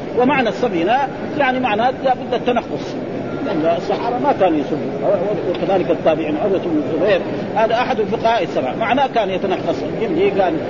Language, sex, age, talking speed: Arabic, male, 40-59, 130 wpm